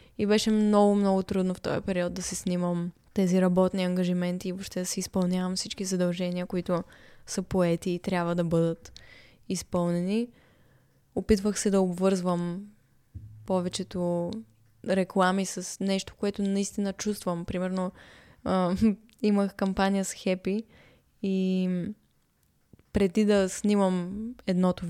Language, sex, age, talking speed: Bulgarian, female, 20-39, 125 wpm